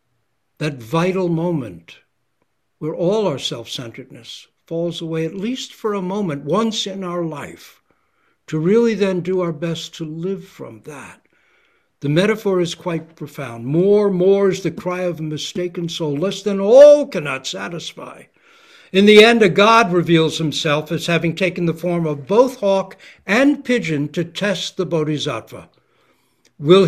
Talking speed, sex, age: 155 wpm, male, 60-79